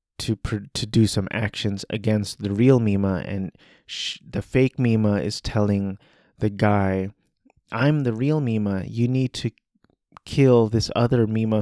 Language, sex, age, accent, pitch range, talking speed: English, male, 30-49, American, 105-140 Hz, 150 wpm